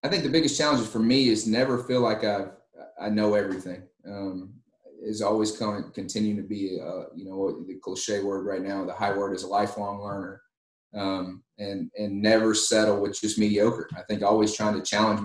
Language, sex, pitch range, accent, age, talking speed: English, male, 95-110 Hz, American, 30-49, 200 wpm